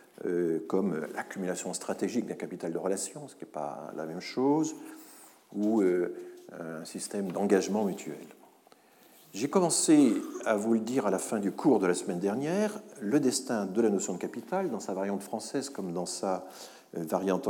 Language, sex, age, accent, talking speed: French, male, 50-69, French, 170 wpm